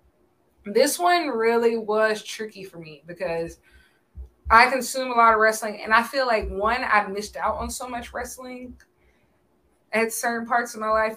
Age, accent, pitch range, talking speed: 20-39, American, 170-220 Hz, 170 wpm